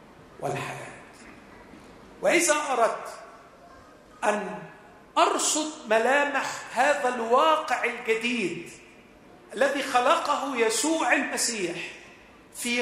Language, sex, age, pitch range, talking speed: Arabic, male, 40-59, 180-275 Hz, 65 wpm